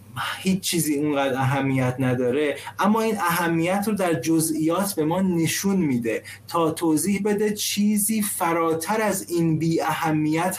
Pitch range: 140-190 Hz